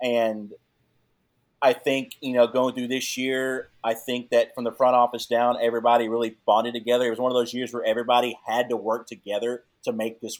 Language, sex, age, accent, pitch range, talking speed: English, male, 30-49, American, 110-125 Hz, 210 wpm